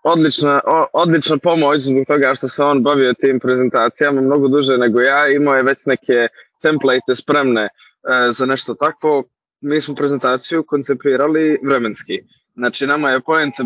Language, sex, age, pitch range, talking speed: Croatian, male, 20-39, 130-155 Hz, 150 wpm